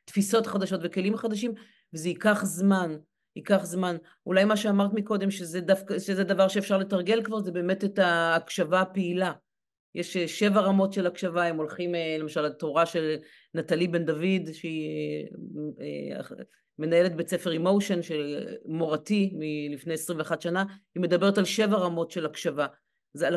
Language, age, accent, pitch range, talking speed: Hebrew, 40-59, native, 165-200 Hz, 145 wpm